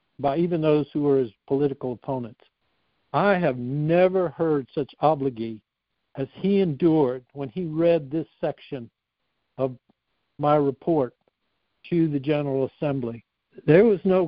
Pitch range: 140-170 Hz